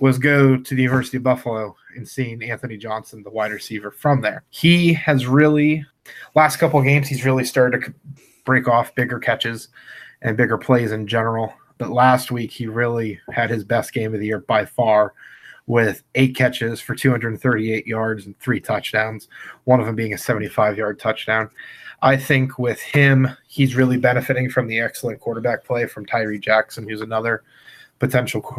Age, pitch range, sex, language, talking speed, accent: 20-39, 110-130 Hz, male, English, 175 wpm, American